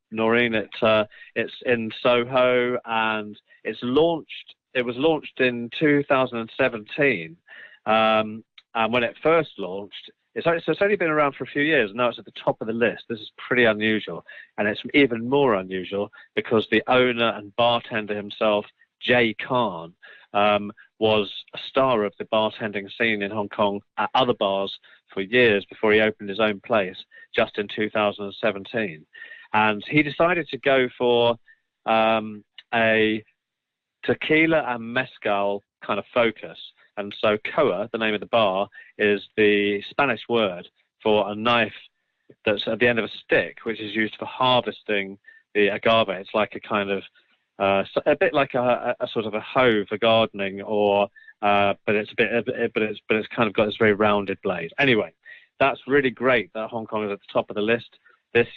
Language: English